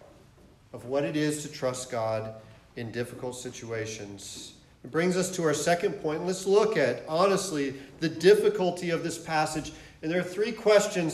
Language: English